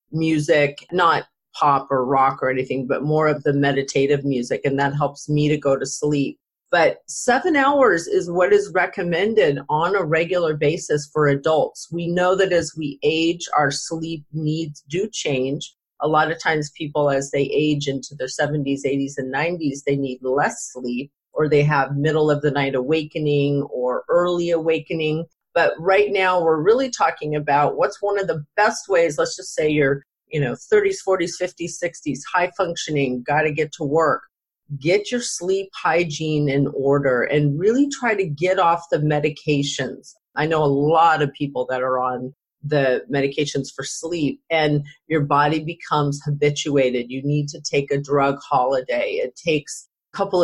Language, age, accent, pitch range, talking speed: English, 40-59, American, 140-170 Hz, 170 wpm